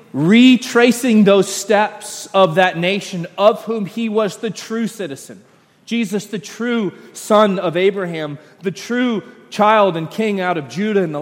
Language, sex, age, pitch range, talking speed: English, male, 30-49, 175-225 Hz, 155 wpm